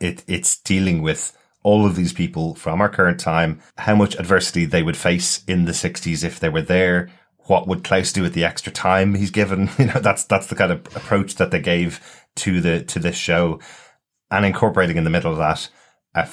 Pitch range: 80-95 Hz